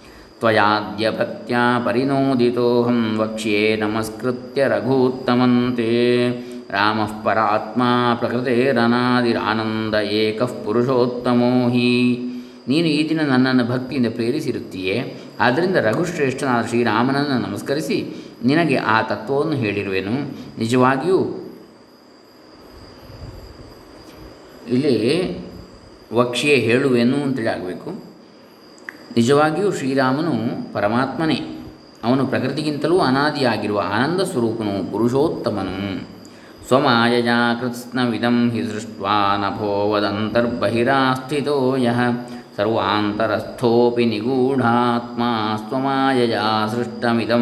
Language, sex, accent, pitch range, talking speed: Kannada, male, native, 110-125 Hz, 60 wpm